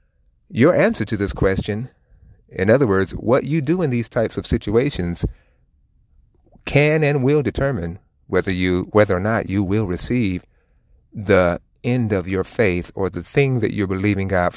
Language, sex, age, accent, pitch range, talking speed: English, male, 30-49, American, 90-115 Hz, 165 wpm